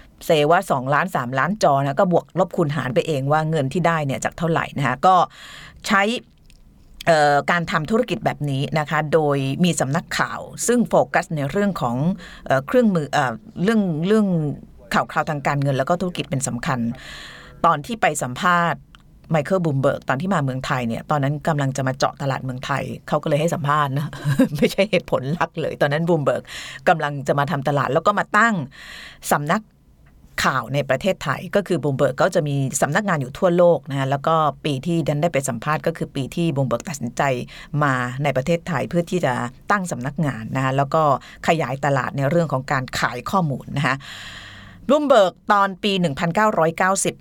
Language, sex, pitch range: Thai, female, 140-175 Hz